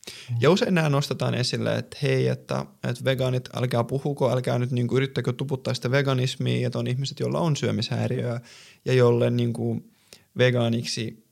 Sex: male